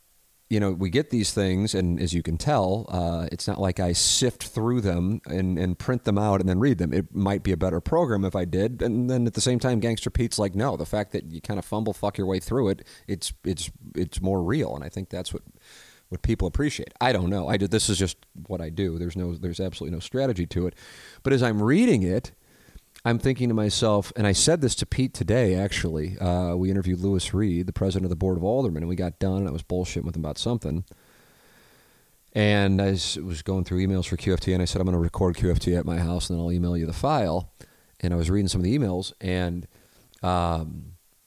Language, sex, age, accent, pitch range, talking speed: English, male, 30-49, American, 85-105 Hz, 245 wpm